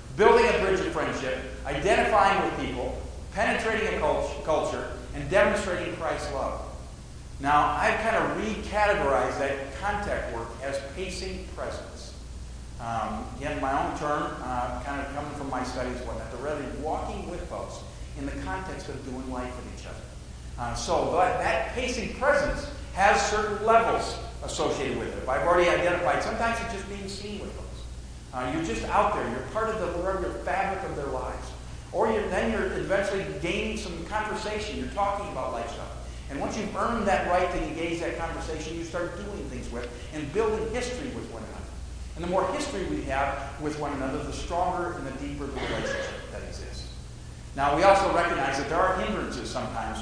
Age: 50-69